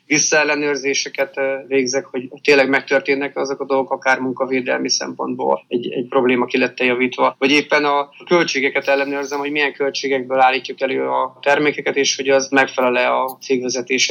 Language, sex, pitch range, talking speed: Hungarian, male, 130-140 Hz, 150 wpm